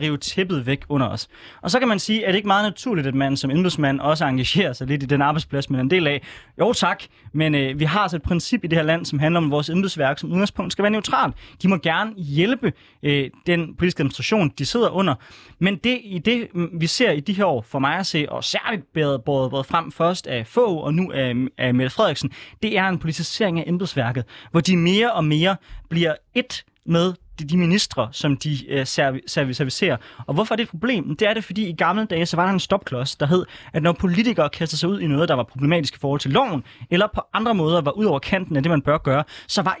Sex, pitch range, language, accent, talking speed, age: male, 140-195 Hz, Danish, native, 245 wpm, 20-39